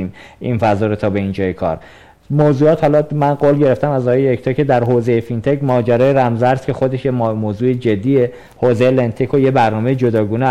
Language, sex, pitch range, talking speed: Persian, male, 115-155 Hz, 185 wpm